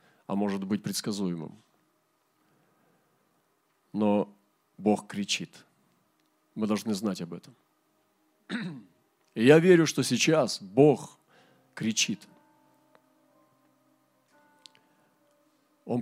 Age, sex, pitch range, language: 40-59, male, 110-165 Hz, Russian